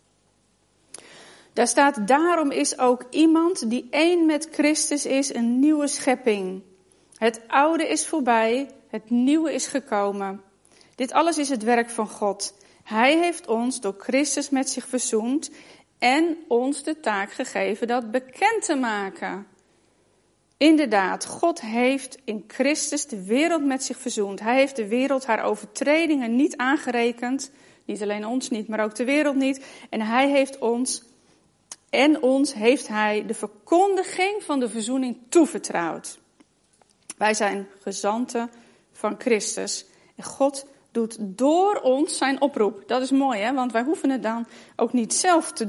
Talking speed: 145 wpm